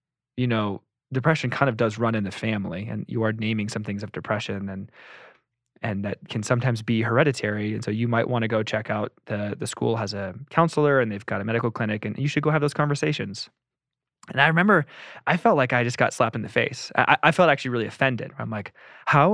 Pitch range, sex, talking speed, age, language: 110-135 Hz, male, 235 wpm, 20-39, English